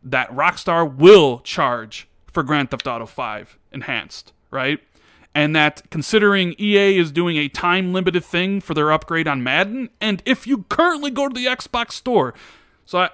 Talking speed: 160 wpm